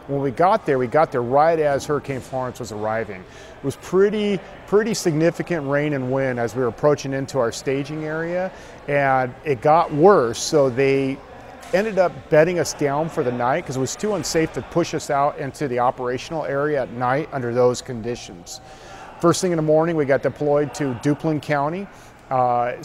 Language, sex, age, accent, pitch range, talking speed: English, male, 40-59, American, 130-165 Hz, 190 wpm